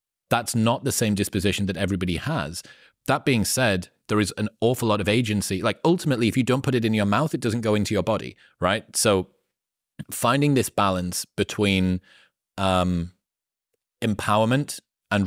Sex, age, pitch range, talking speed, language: male, 30-49, 95-110 Hz, 170 wpm, English